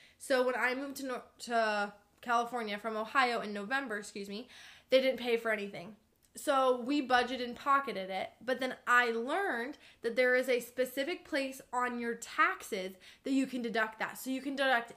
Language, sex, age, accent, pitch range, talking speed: English, female, 20-39, American, 225-265 Hz, 190 wpm